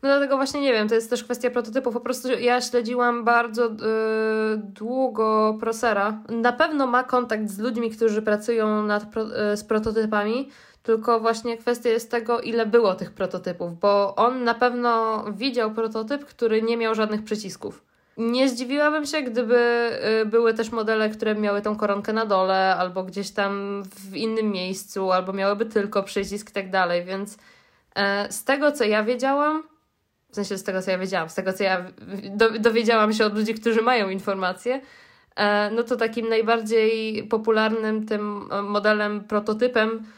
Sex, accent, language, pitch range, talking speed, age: female, native, Polish, 205-240 Hz, 155 wpm, 20-39